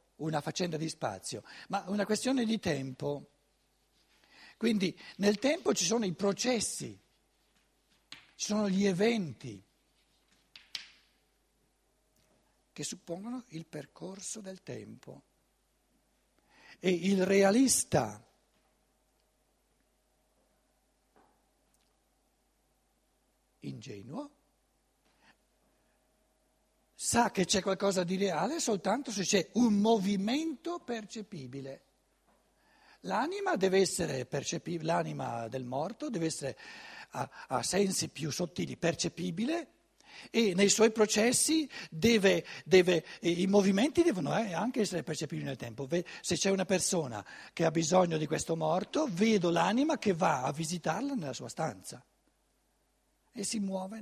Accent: native